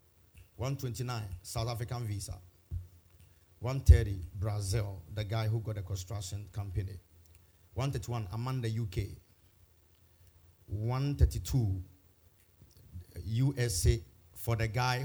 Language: English